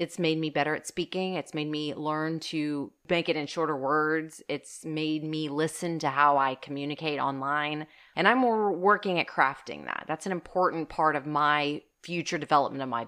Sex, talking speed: female, 195 wpm